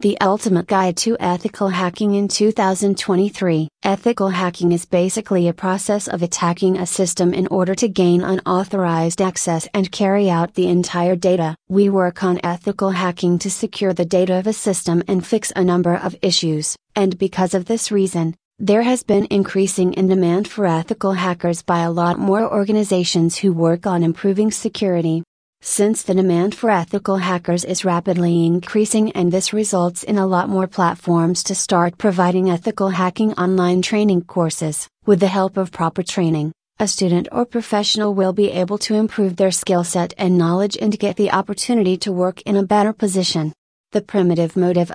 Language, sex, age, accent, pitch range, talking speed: English, female, 30-49, American, 175-200 Hz, 175 wpm